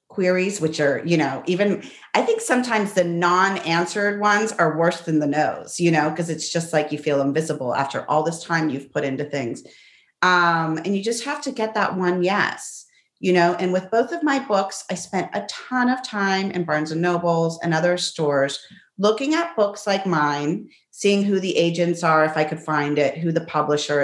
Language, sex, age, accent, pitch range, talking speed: English, female, 30-49, American, 155-195 Hz, 210 wpm